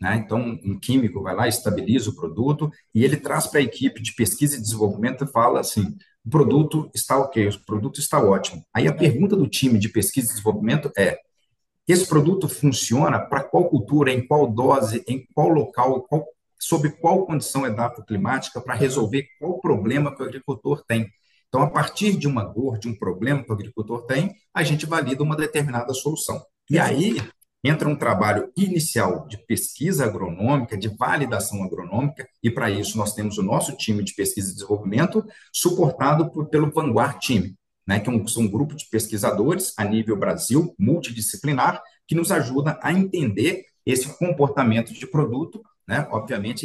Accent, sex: Brazilian, male